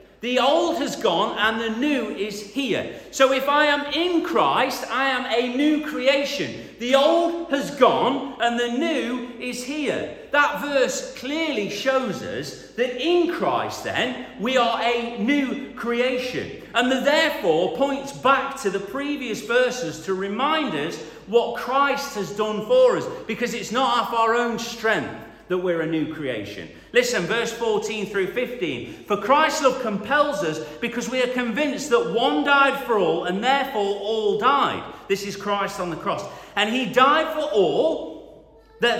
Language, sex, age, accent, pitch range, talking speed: English, male, 40-59, British, 220-280 Hz, 165 wpm